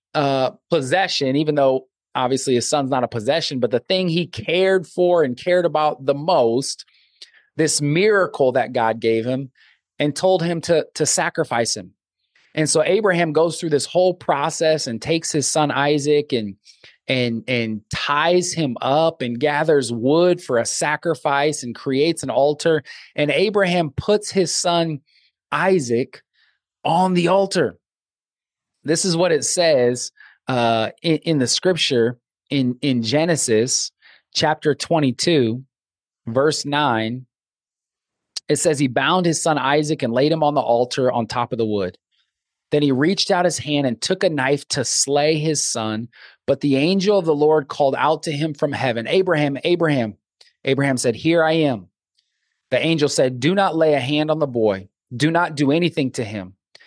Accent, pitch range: American, 125-165 Hz